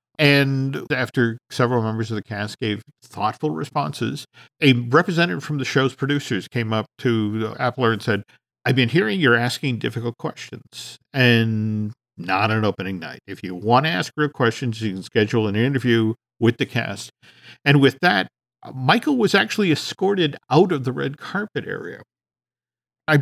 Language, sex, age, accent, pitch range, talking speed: English, male, 50-69, American, 105-135 Hz, 165 wpm